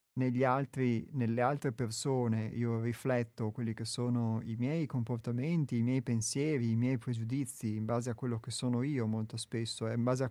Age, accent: 30-49, native